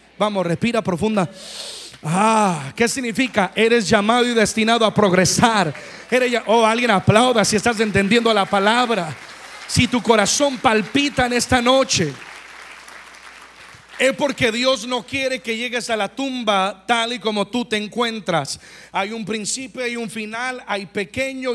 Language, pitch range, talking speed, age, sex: Spanish, 185-230 Hz, 140 wpm, 40-59, male